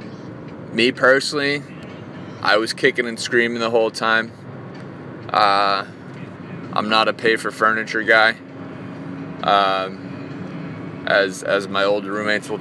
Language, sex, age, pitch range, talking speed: English, male, 20-39, 105-150 Hz, 120 wpm